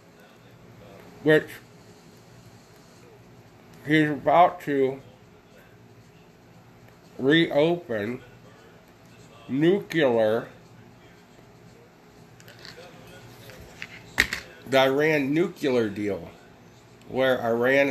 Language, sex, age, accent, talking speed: English, male, 50-69, American, 40 wpm